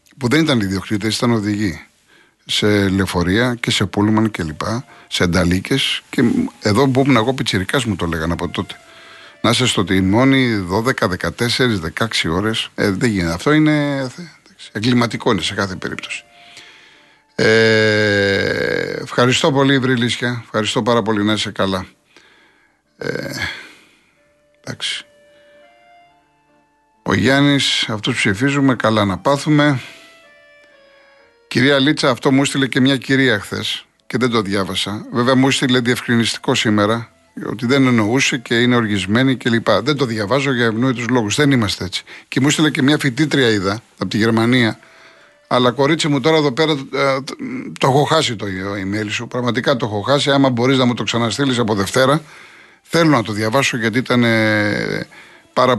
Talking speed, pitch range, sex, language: 145 wpm, 110-140 Hz, male, Greek